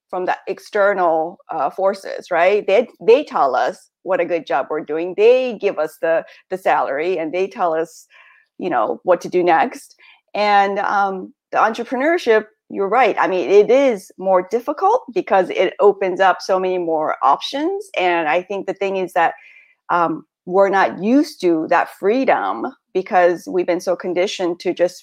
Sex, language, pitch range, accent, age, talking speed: female, English, 180-235 Hz, American, 30-49, 175 wpm